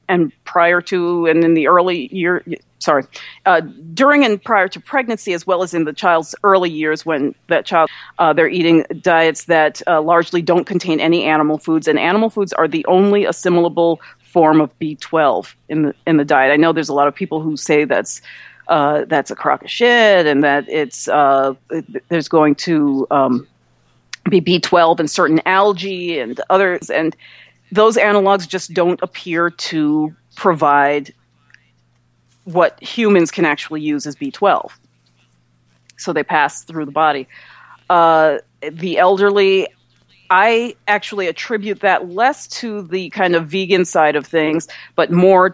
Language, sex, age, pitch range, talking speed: English, female, 40-59, 150-185 Hz, 160 wpm